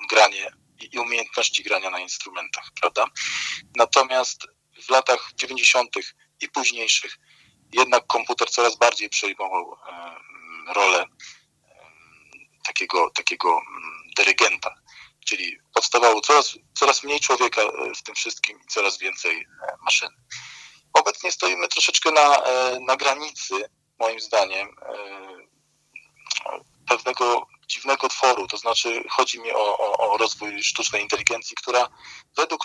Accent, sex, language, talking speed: native, male, Polish, 105 wpm